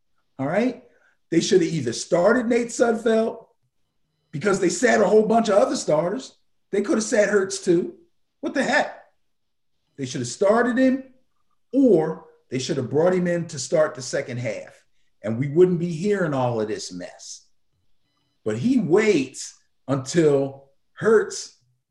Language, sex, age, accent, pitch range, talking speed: English, male, 50-69, American, 140-215 Hz, 160 wpm